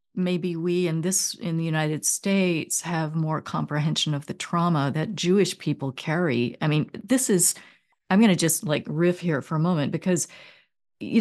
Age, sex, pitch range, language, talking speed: 40-59, female, 160-205 Hz, English, 180 wpm